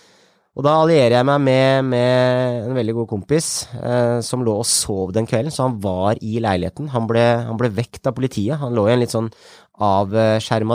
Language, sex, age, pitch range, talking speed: English, male, 20-39, 110-135 Hz, 205 wpm